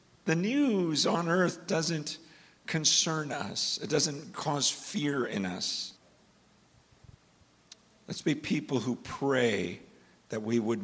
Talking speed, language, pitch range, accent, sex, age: 115 wpm, English, 130-180 Hz, American, male, 50-69